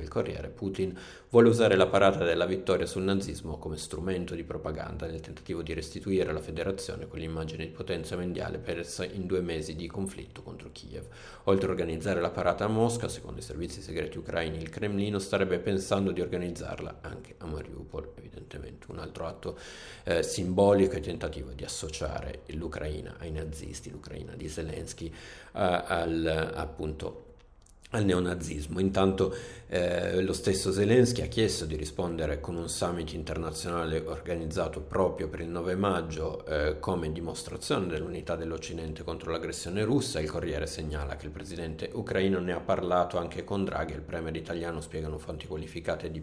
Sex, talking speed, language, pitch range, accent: male, 160 wpm, Italian, 80-95 Hz, native